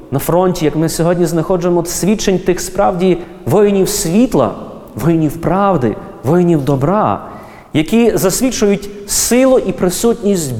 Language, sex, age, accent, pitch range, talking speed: Ukrainian, male, 30-49, native, 120-185 Hz, 115 wpm